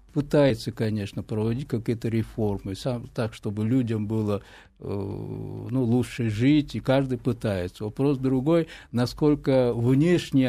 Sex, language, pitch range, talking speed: male, Russian, 105-130 Hz, 115 wpm